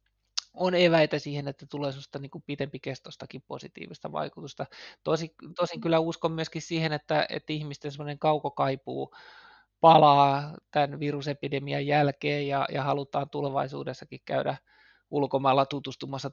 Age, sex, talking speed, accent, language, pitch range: 20-39, male, 115 wpm, native, Finnish, 135-150 Hz